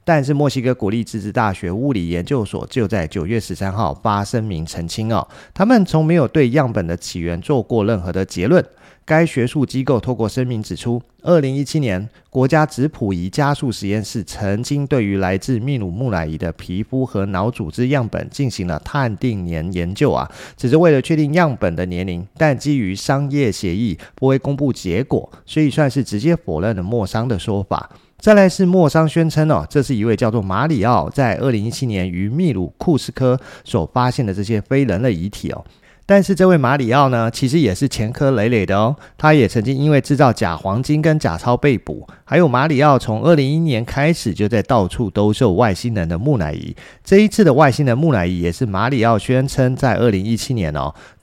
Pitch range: 100-145 Hz